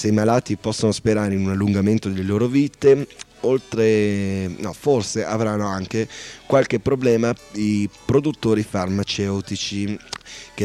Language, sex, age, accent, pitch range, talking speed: Italian, male, 30-49, native, 95-110 Hz, 125 wpm